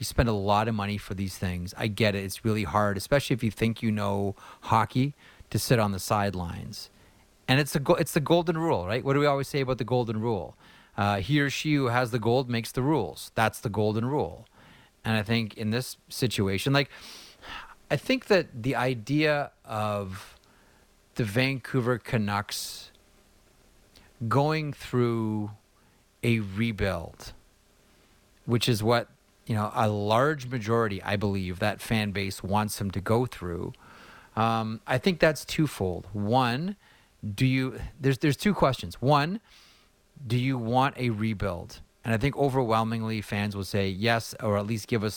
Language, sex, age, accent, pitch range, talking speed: English, male, 30-49, American, 105-130 Hz, 170 wpm